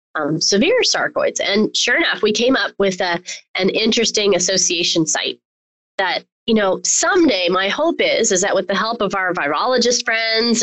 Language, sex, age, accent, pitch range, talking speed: English, female, 30-49, American, 180-235 Hz, 175 wpm